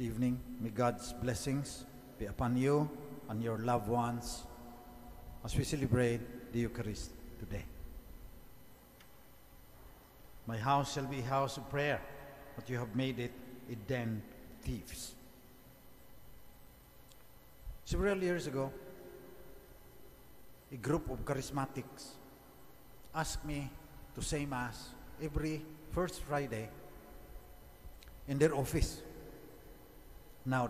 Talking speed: 100 wpm